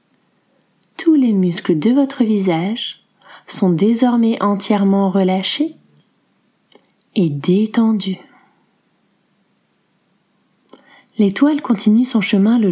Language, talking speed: French, 80 wpm